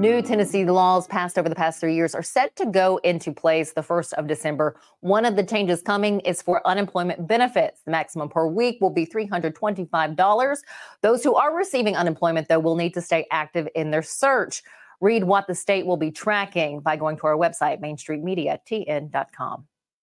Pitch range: 165-220 Hz